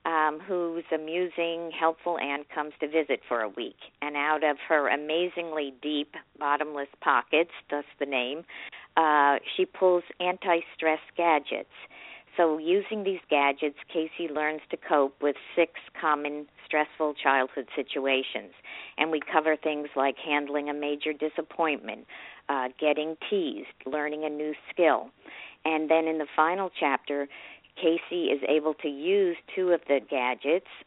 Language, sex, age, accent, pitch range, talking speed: English, female, 50-69, American, 140-165 Hz, 140 wpm